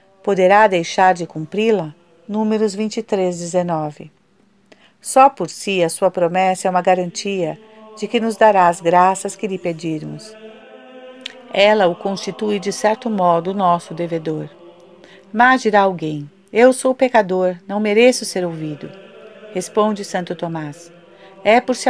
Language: Portuguese